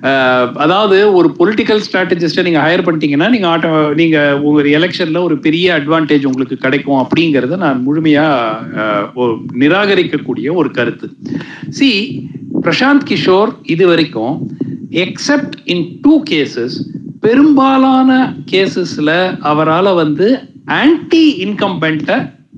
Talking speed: 95 wpm